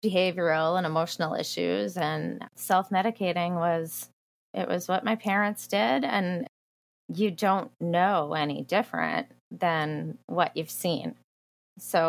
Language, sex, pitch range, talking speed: English, female, 165-205 Hz, 120 wpm